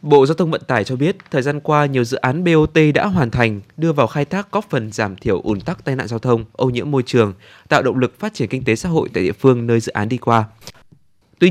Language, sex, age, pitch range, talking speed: Vietnamese, male, 20-39, 115-155 Hz, 275 wpm